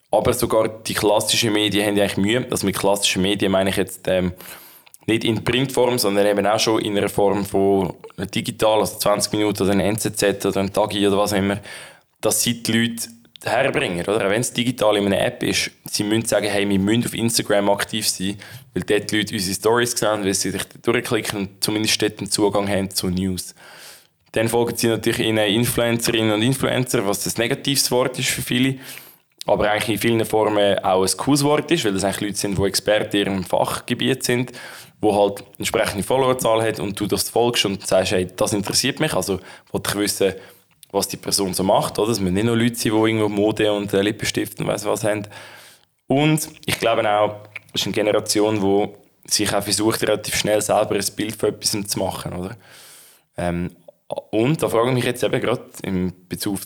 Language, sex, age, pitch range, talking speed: German, male, 20-39, 100-115 Hz, 200 wpm